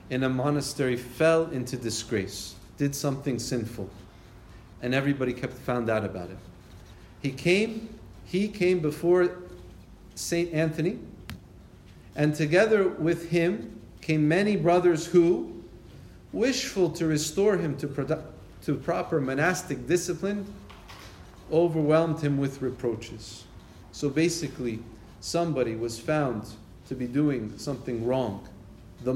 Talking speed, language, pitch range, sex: 115 wpm, English, 110-155 Hz, male